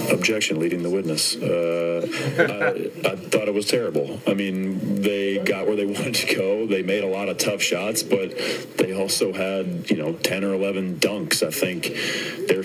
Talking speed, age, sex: 190 wpm, 40-59, male